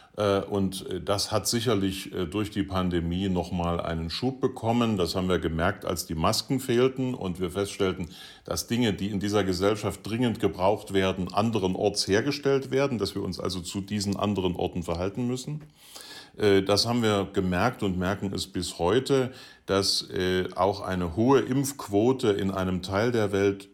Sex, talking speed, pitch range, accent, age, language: male, 165 wpm, 95-115 Hz, German, 50-69, German